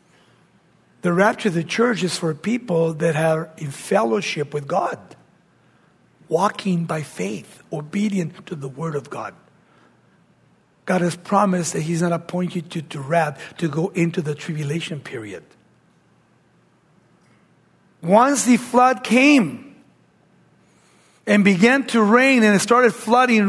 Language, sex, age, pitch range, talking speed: English, male, 60-79, 165-230 Hz, 130 wpm